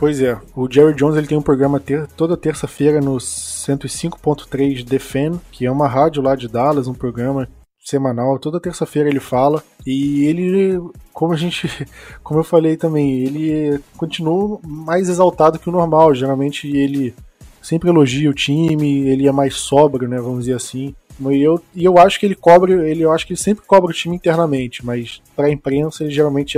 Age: 20-39